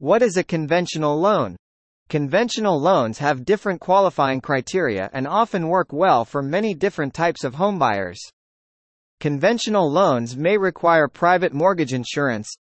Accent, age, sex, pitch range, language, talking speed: American, 30-49, male, 135-195 Hz, English, 135 wpm